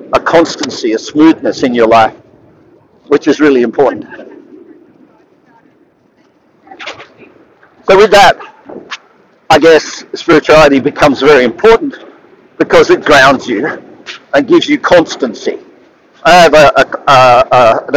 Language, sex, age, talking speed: English, male, 50-69, 105 wpm